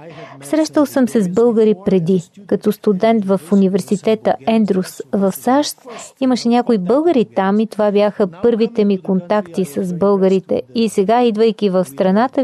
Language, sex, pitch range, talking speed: Bulgarian, female, 195-245 Hz, 145 wpm